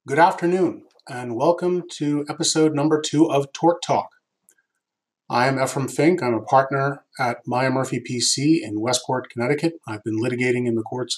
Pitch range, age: 120-150 Hz, 30-49